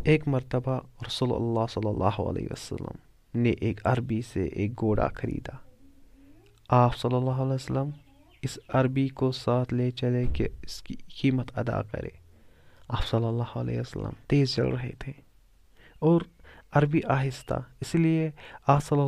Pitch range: 110-130 Hz